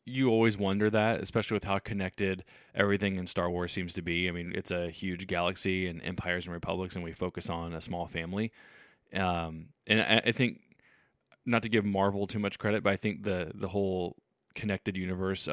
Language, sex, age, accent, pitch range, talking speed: English, male, 20-39, American, 90-105 Hz, 200 wpm